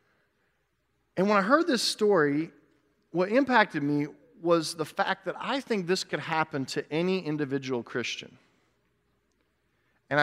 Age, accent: 40-59, American